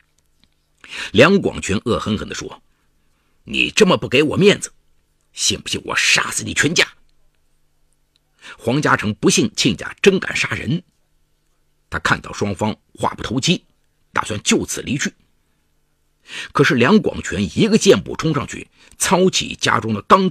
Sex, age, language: male, 50-69, Chinese